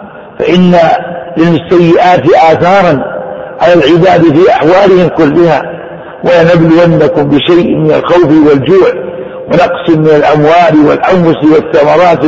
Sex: male